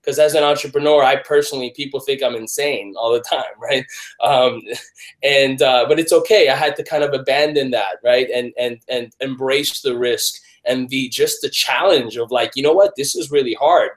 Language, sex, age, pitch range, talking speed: English, male, 20-39, 130-210 Hz, 205 wpm